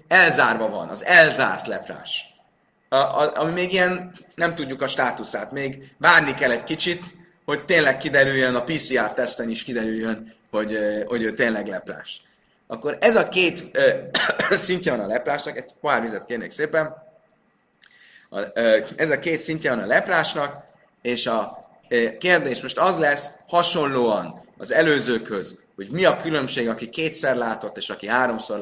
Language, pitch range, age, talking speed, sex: Hungarian, 135-180 Hz, 30-49, 155 wpm, male